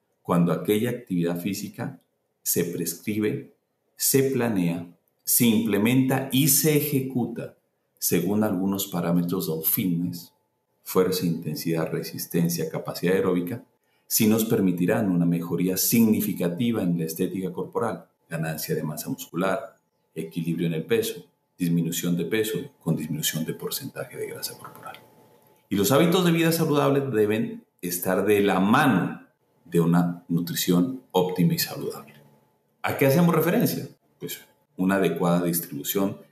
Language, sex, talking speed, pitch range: Spanish, male, 125 wpm, 85-125 Hz